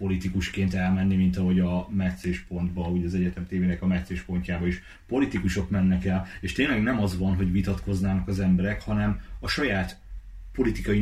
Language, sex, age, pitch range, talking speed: Hungarian, male, 30-49, 90-100 Hz, 160 wpm